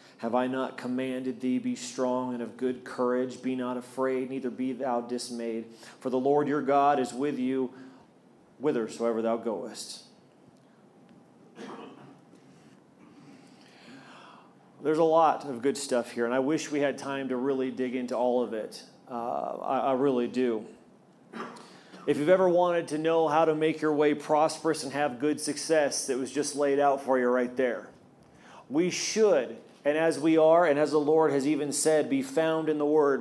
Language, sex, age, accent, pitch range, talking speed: English, male, 40-59, American, 130-160 Hz, 175 wpm